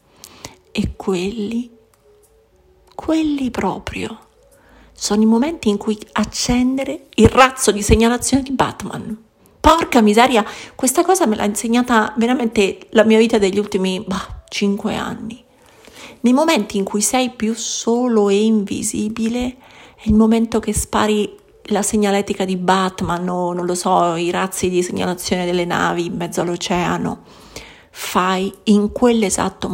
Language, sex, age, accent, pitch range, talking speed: Italian, female, 40-59, native, 200-250 Hz, 135 wpm